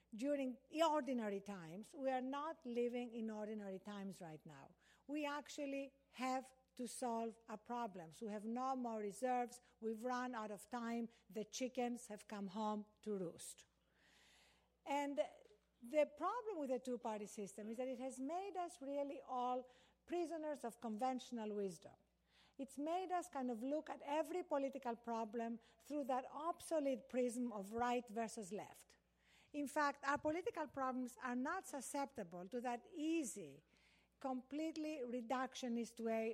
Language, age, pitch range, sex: English, 50-69, 225-280 Hz, female